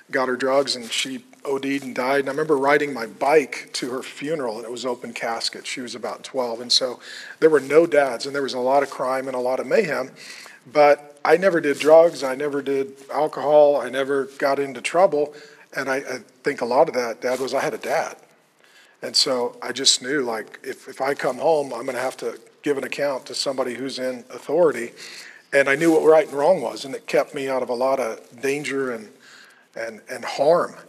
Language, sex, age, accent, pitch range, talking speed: English, male, 40-59, American, 135-160 Hz, 230 wpm